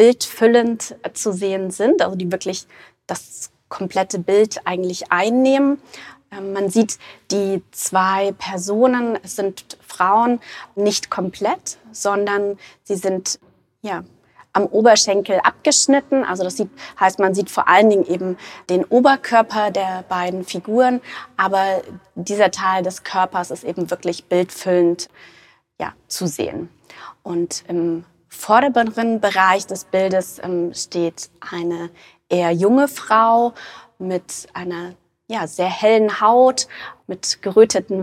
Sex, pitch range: female, 185-215 Hz